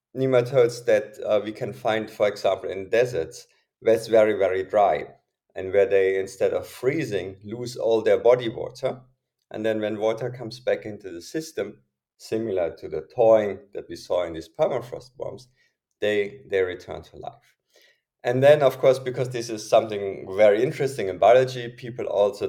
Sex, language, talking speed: male, English, 175 wpm